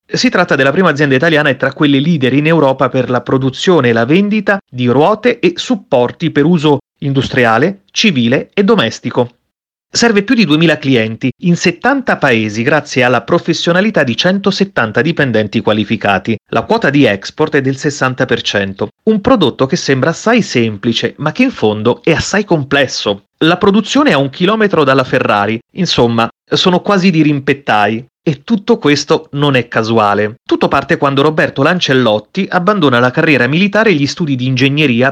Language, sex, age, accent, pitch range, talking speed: Italian, male, 30-49, native, 125-180 Hz, 165 wpm